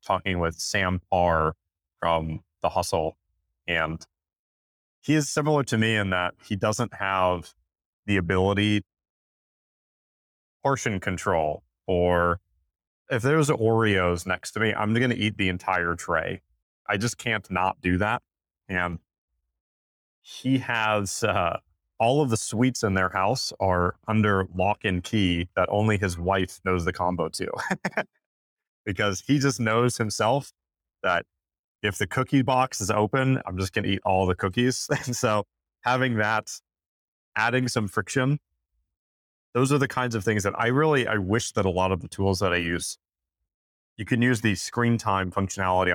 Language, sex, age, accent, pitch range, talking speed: English, male, 30-49, American, 85-110 Hz, 155 wpm